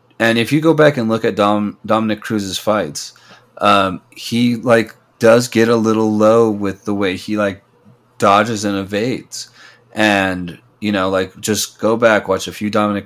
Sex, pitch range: male, 95-105 Hz